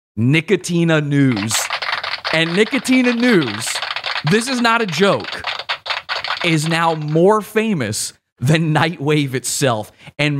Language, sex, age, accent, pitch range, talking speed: English, male, 30-49, American, 130-180 Hz, 105 wpm